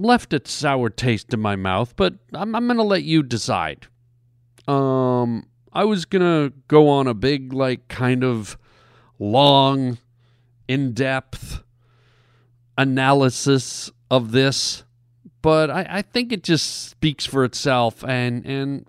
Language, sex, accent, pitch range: English, male, American, 120-145 Hz